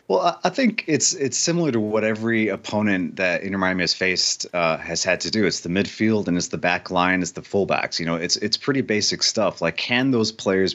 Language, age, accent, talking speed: English, 30-49, American, 235 wpm